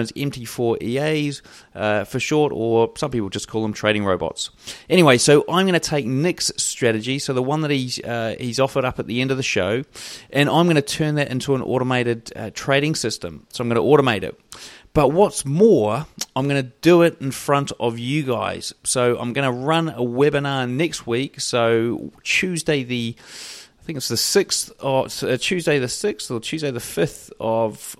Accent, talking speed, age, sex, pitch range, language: British, 205 wpm, 30-49, male, 120-150 Hz, English